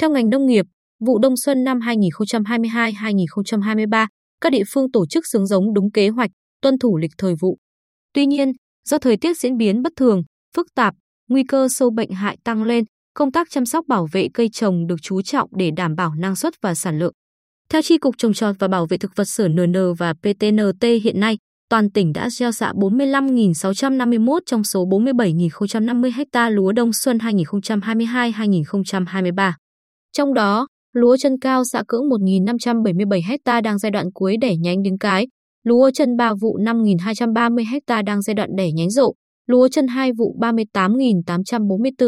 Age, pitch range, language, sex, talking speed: 20-39, 195-250 Hz, Vietnamese, female, 175 wpm